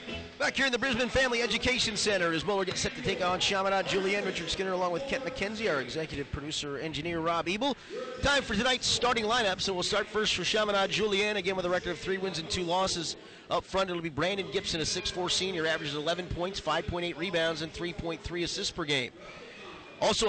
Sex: male